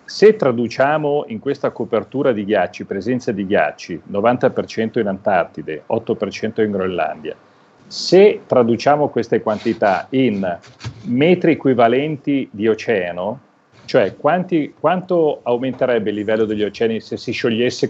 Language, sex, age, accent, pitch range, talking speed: Italian, male, 40-59, native, 110-145 Hz, 115 wpm